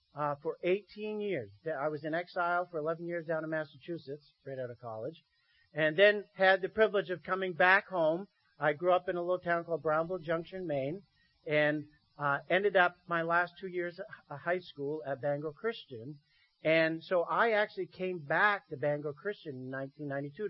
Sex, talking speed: male, 185 wpm